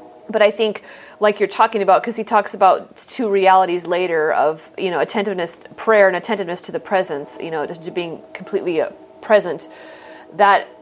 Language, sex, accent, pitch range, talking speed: English, female, American, 180-215 Hz, 180 wpm